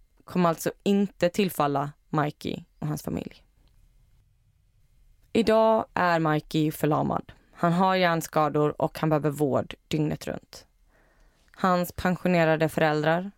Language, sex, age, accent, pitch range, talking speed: Swedish, female, 20-39, native, 150-170 Hz, 110 wpm